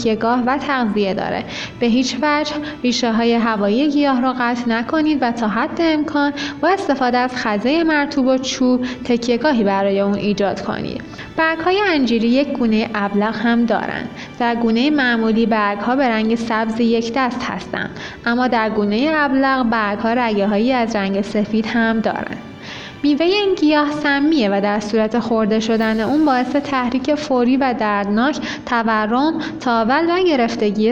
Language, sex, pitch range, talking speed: Persian, female, 220-280 Hz, 150 wpm